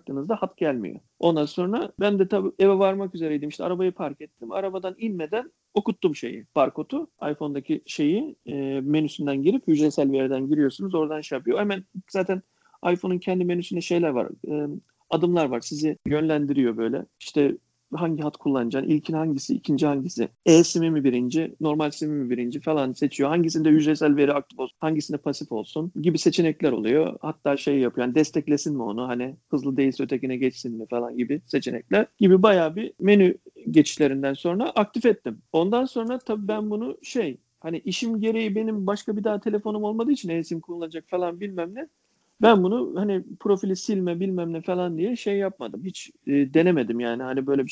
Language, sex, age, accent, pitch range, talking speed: Turkish, male, 40-59, native, 145-190 Hz, 165 wpm